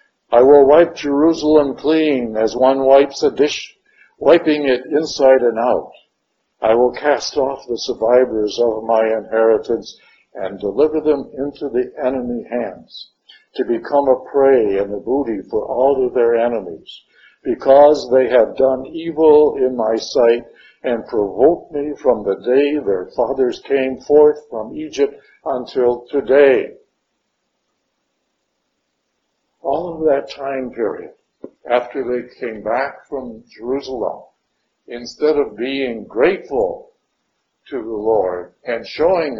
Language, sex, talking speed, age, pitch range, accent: English, male, 130 wpm, 60-79, 120-175 Hz, American